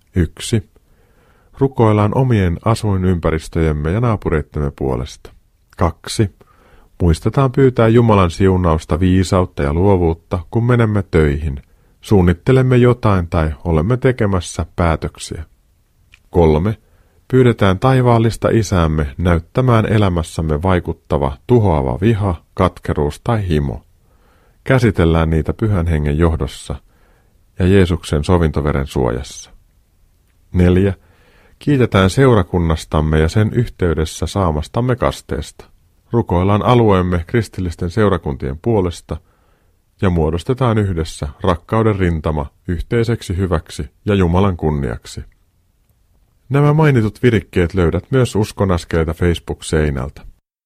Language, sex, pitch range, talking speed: Finnish, male, 80-110 Hz, 90 wpm